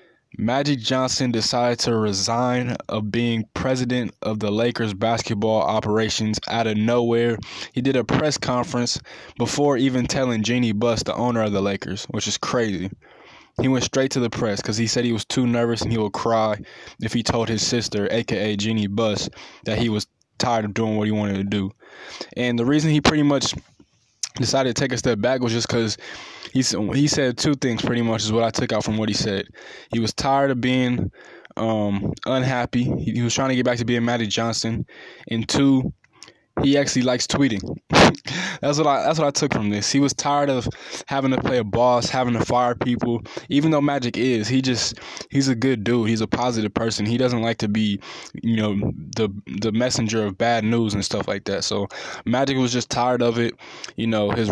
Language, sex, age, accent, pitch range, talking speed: English, male, 10-29, American, 110-130 Hz, 205 wpm